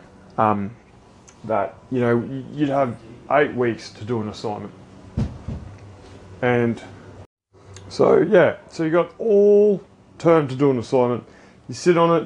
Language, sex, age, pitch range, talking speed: English, male, 20-39, 105-140 Hz, 135 wpm